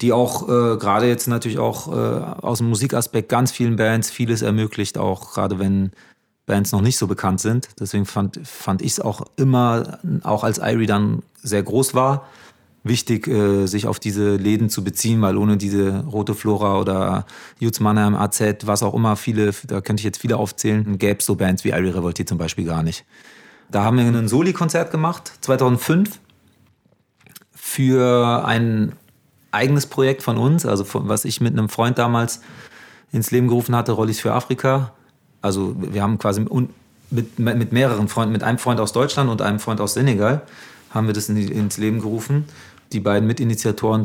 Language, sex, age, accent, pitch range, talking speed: German, male, 30-49, German, 100-120 Hz, 185 wpm